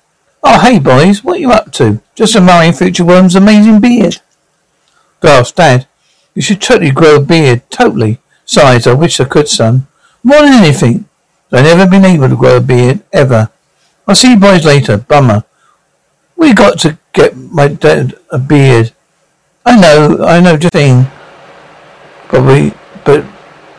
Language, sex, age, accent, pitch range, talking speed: English, male, 60-79, British, 135-195 Hz, 160 wpm